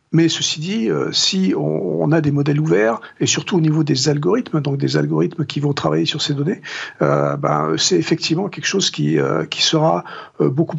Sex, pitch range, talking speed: male, 140-160 Hz, 200 wpm